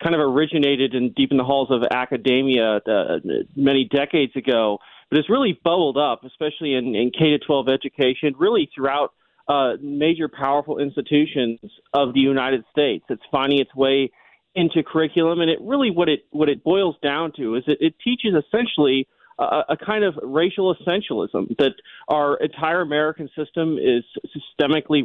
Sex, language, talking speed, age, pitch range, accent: male, English, 165 wpm, 30-49, 140-175 Hz, American